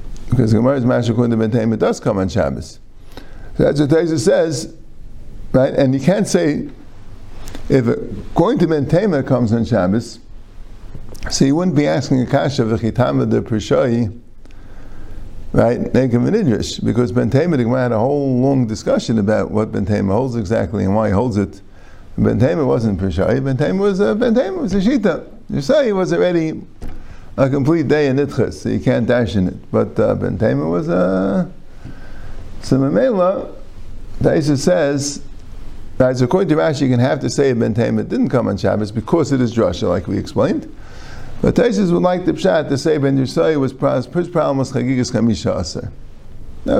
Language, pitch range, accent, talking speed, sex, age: English, 105-140 Hz, American, 170 wpm, male, 50-69